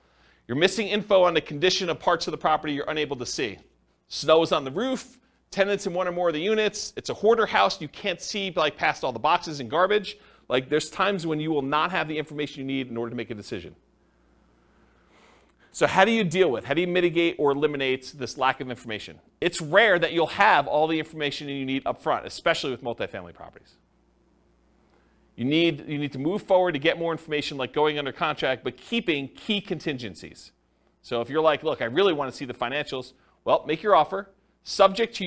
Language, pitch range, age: English, 130-180 Hz, 40-59